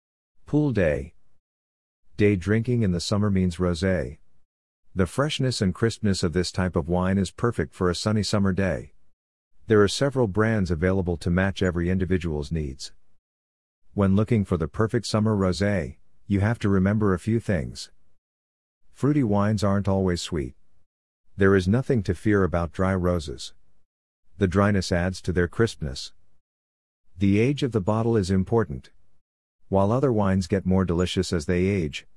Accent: American